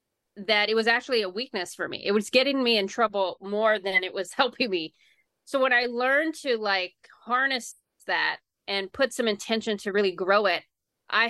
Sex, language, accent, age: female, English, American, 20-39